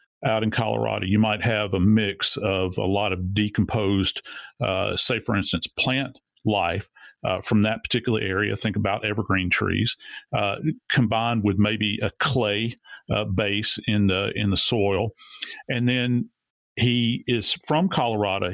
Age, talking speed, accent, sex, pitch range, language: 50-69, 150 wpm, American, male, 105-140 Hz, English